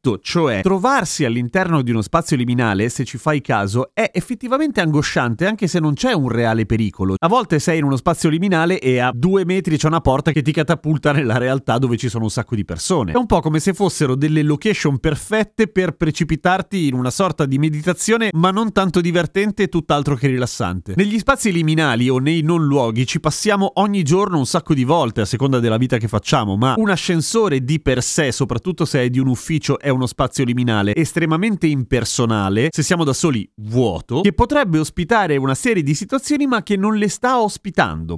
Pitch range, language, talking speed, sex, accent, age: 125-180 Hz, Italian, 200 wpm, male, native, 30-49